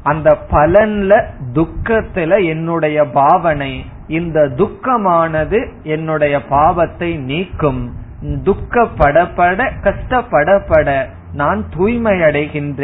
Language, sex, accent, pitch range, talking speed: Tamil, male, native, 145-195 Hz, 50 wpm